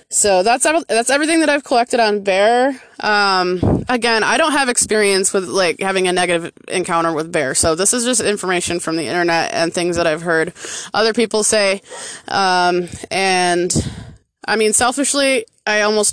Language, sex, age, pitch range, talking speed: English, female, 20-39, 180-225 Hz, 170 wpm